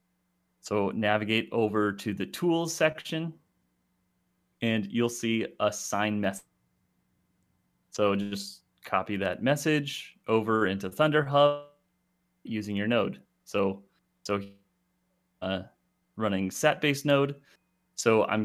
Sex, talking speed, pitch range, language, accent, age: male, 105 wpm, 100-125 Hz, English, American, 30-49